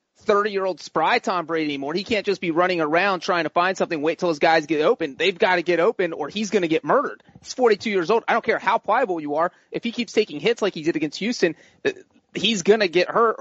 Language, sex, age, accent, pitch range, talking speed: English, male, 30-49, American, 165-205 Hz, 255 wpm